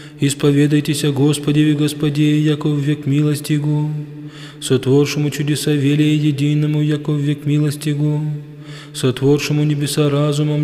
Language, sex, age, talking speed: English, male, 20-39, 120 wpm